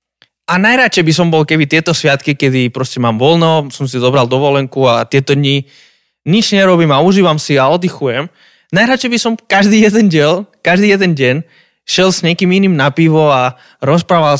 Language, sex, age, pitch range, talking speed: Slovak, male, 20-39, 130-185 Hz, 180 wpm